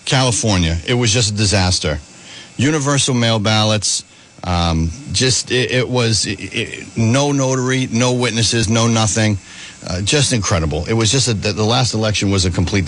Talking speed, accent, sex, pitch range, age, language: 155 wpm, American, male, 95-130 Hz, 50-69, English